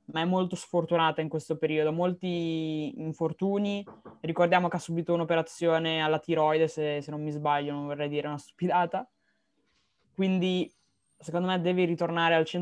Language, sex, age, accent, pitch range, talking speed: Italian, female, 20-39, native, 160-185 Hz, 150 wpm